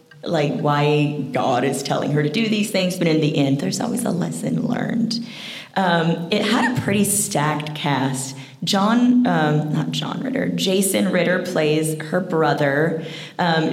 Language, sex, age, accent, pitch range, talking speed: English, female, 30-49, American, 155-235 Hz, 160 wpm